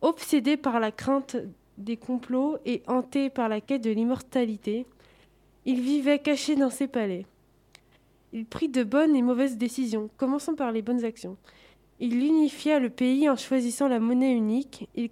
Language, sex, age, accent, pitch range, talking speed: French, female, 20-39, French, 225-265 Hz, 165 wpm